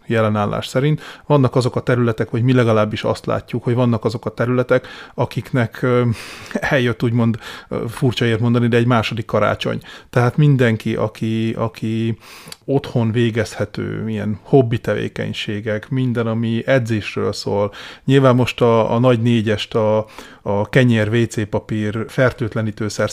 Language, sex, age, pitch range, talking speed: Hungarian, male, 30-49, 110-130 Hz, 130 wpm